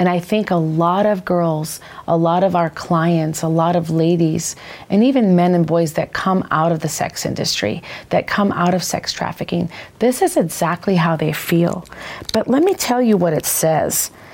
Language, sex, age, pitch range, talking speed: English, female, 40-59, 170-220 Hz, 200 wpm